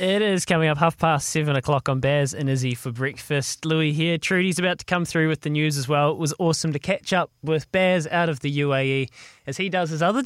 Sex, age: male, 20-39